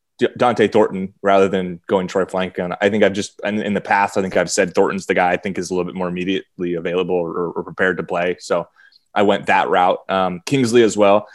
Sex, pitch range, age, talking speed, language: male, 95-125 Hz, 20-39, 240 wpm, English